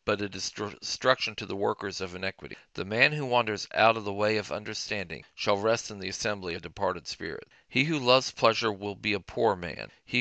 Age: 40-59